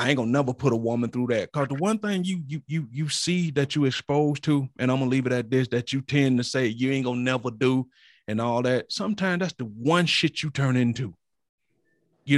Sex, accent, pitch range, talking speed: male, American, 110-145 Hz, 260 wpm